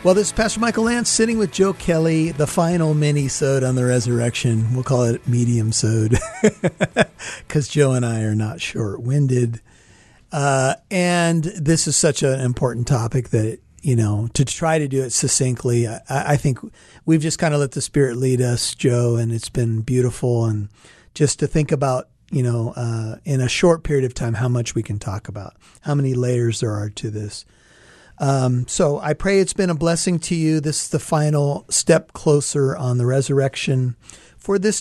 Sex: male